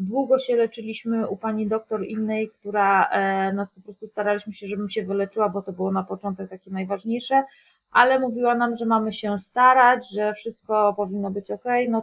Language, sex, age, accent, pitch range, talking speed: Polish, female, 20-39, native, 205-235 Hz, 180 wpm